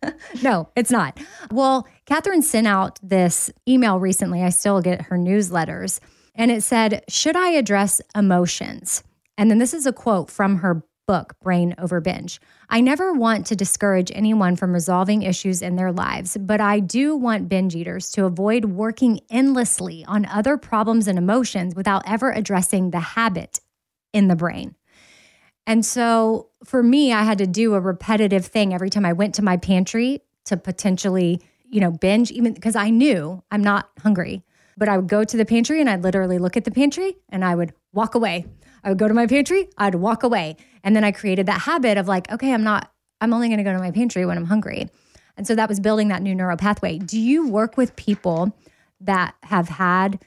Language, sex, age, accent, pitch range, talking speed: English, female, 20-39, American, 185-230 Hz, 200 wpm